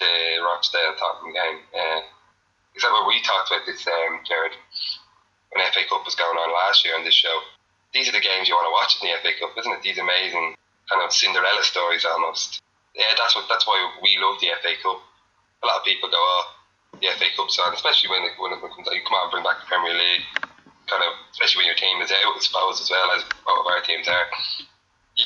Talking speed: 240 wpm